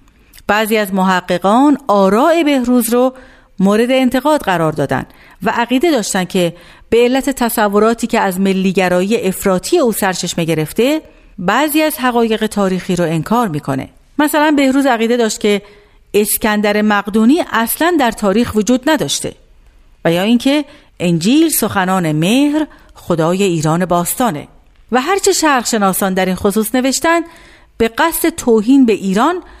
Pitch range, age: 185-255 Hz, 50-69